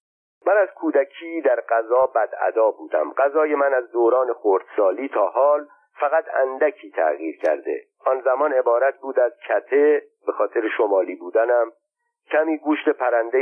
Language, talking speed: Persian, 145 wpm